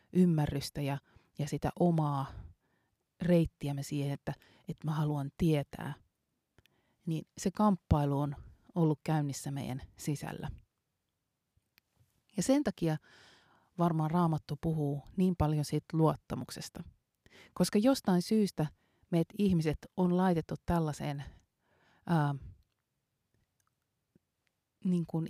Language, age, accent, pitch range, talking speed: Finnish, 30-49, native, 140-175 Hz, 95 wpm